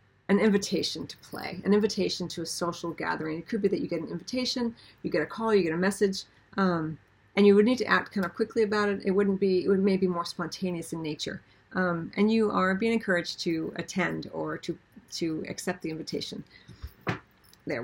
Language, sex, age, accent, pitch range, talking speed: English, female, 40-59, American, 170-205 Hz, 215 wpm